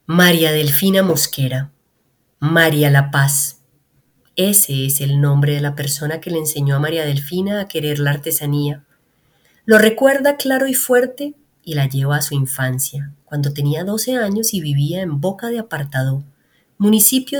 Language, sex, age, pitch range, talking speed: Spanish, female, 30-49, 140-205 Hz, 155 wpm